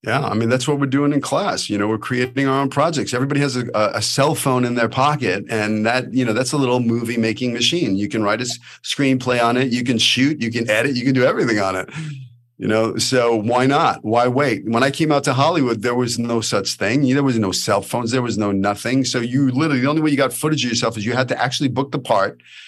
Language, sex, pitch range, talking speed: English, male, 115-145 Hz, 265 wpm